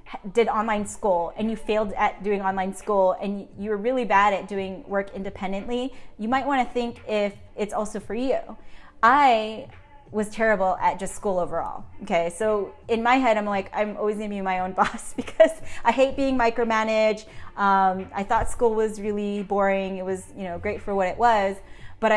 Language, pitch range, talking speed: English, 195-225 Hz, 195 wpm